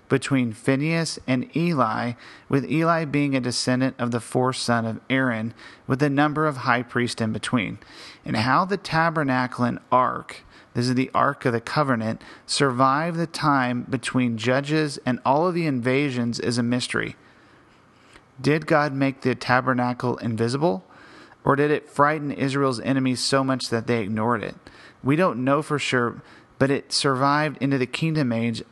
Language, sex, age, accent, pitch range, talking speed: English, male, 40-59, American, 120-145 Hz, 165 wpm